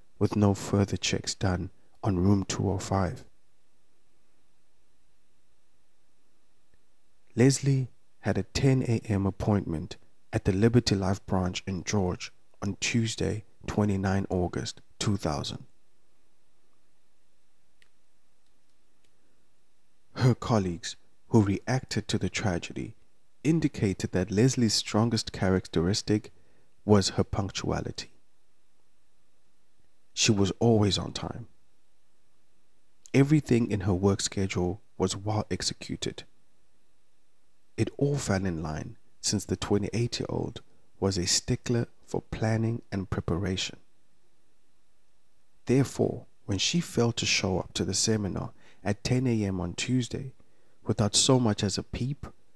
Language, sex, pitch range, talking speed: English, male, 95-120 Hz, 100 wpm